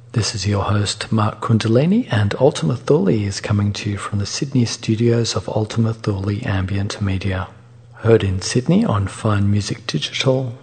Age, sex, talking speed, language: 40-59, male, 165 wpm, English